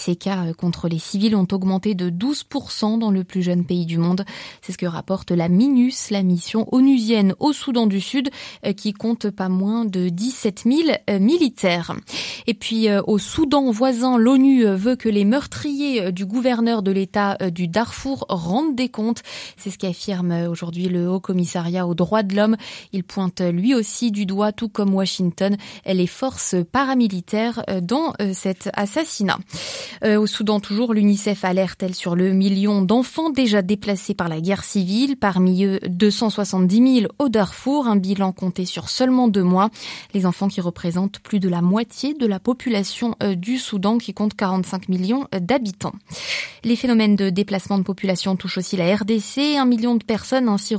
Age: 20-39